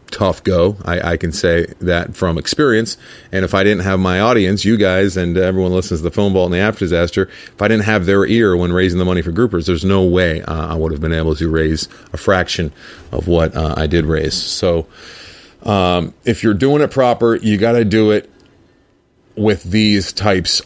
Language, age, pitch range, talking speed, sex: English, 40-59, 85-100 Hz, 220 wpm, male